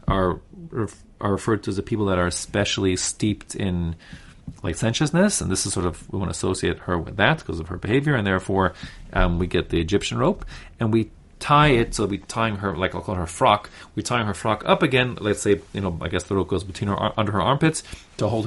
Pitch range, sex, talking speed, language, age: 95-125 Hz, male, 230 wpm, English, 30-49